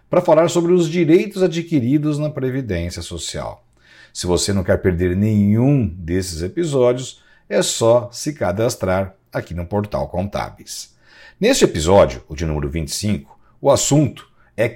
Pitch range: 85-135 Hz